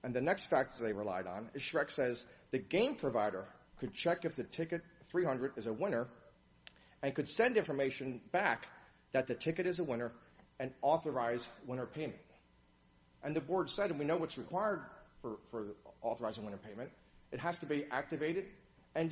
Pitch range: 110-165 Hz